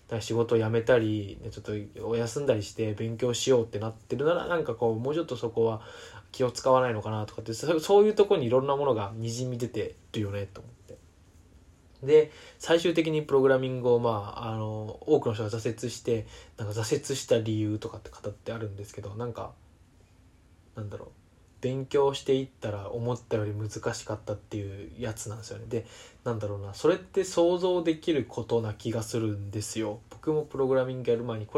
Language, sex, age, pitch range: Japanese, male, 20-39, 105-130 Hz